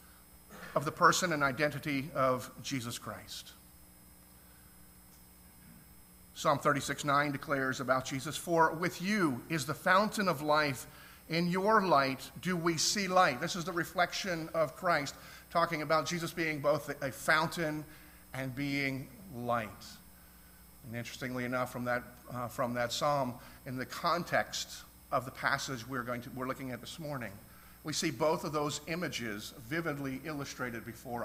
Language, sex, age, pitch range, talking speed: English, male, 50-69, 130-170 Hz, 150 wpm